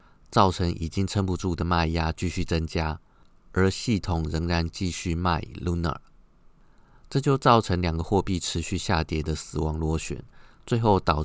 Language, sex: Chinese, male